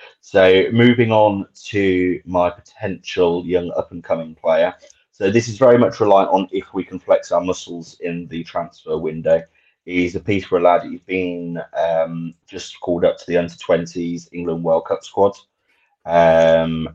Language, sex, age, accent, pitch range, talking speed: English, male, 30-49, British, 85-95 Hz, 155 wpm